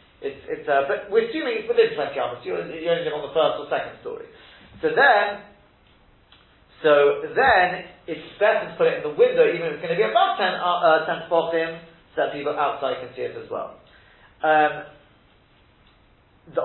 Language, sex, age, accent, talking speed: English, male, 40-59, British, 195 wpm